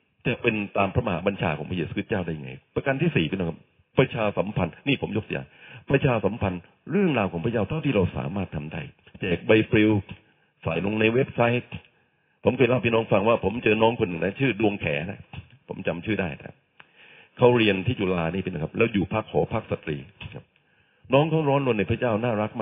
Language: Thai